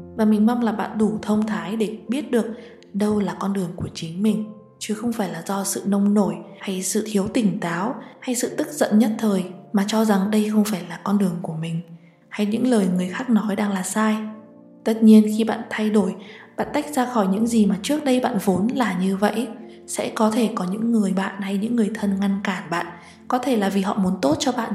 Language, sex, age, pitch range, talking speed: Vietnamese, female, 20-39, 195-235 Hz, 240 wpm